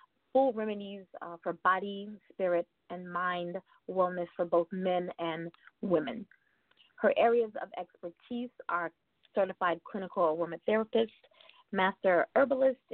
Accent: American